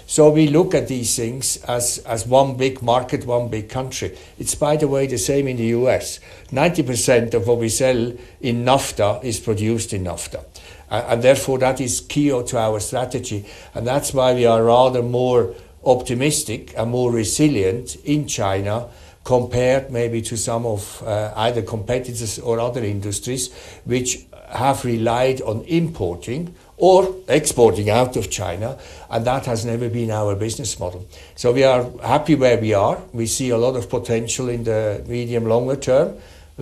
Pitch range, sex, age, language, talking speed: 115-130 Hz, male, 60-79, English, 170 wpm